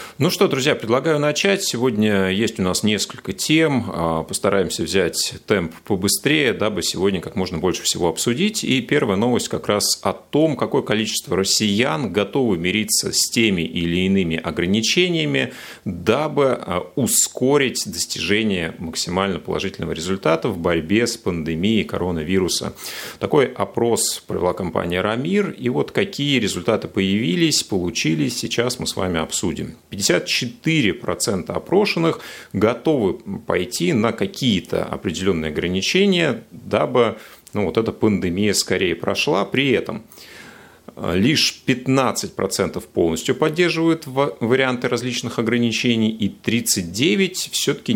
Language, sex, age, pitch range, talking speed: Russian, male, 30-49, 100-150 Hz, 115 wpm